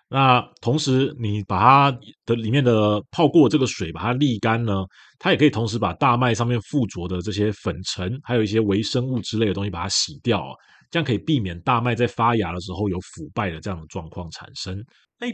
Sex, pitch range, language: male, 100-135 Hz, Chinese